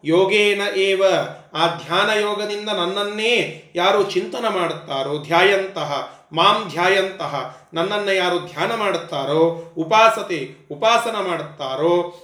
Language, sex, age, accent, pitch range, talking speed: Kannada, male, 30-49, native, 175-235 Hz, 95 wpm